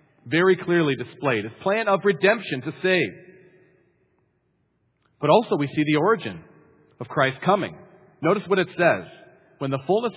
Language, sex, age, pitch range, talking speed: English, male, 40-59, 150-190 Hz, 150 wpm